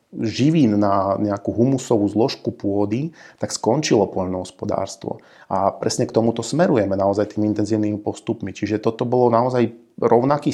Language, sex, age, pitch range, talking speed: Slovak, male, 30-49, 105-115 Hz, 130 wpm